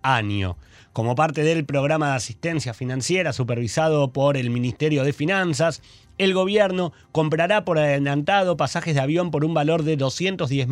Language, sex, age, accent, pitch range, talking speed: Spanish, male, 30-49, Argentinian, 135-170 Hz, 150 wpm